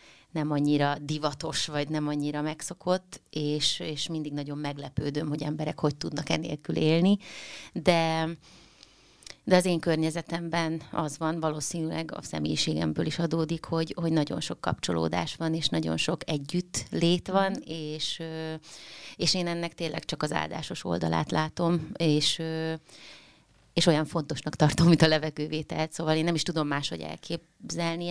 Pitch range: 150-170 Hz